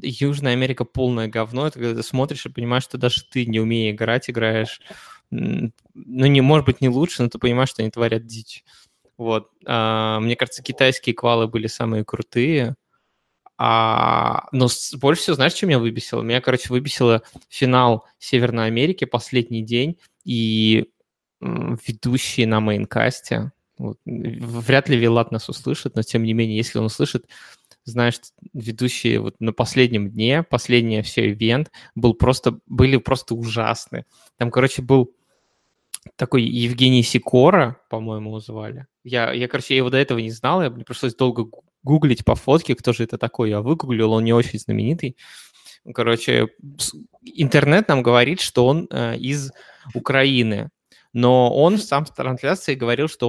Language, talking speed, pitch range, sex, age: Russian, 155 wpm, 115-130 Hz, male, 20-39